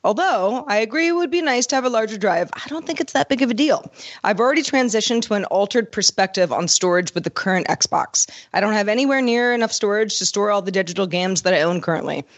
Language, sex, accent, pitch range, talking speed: English, female, American, 185-240 Hz, 245 wpm